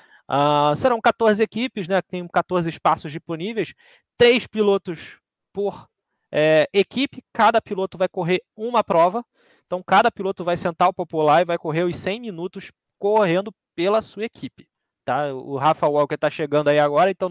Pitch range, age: 160-200 Hz, 20-39